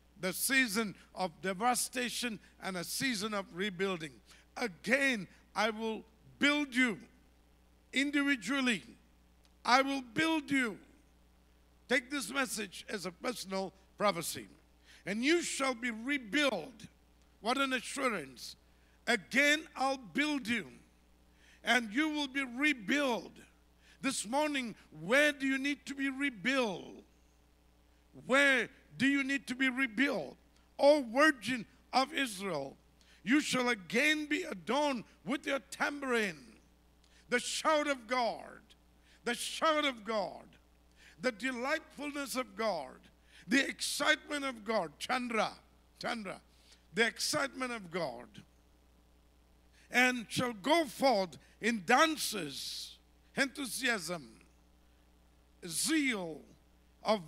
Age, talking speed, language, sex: 50-69, 105 wpm, English, male